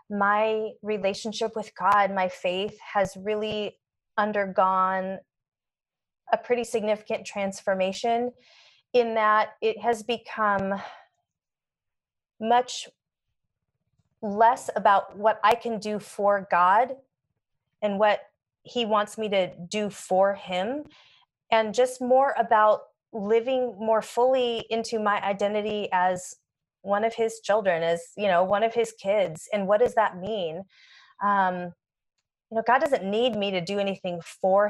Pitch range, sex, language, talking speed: 185-230 Hz, female, English, 130 wpm